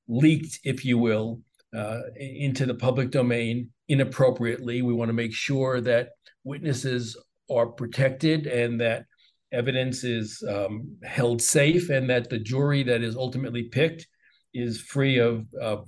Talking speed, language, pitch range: 145 wpm, English, 120-140 Hz